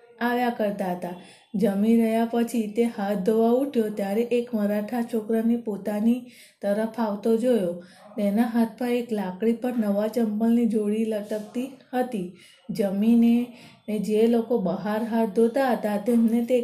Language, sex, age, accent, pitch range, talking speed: Gujarati, female, 20-39, native, 210-235 Hz, 135 wpm